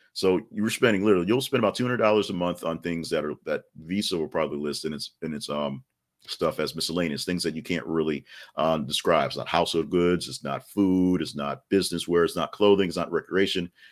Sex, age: male, 40-59